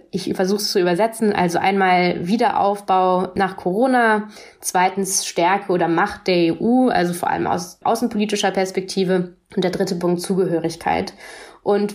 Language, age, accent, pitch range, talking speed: German, 20-39, German, 175-200 Hz, 140 wpm